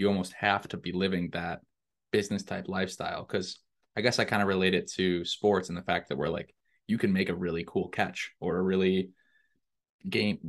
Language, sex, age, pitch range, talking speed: English, male, 20-39, 95-105 Hz, 210 wpm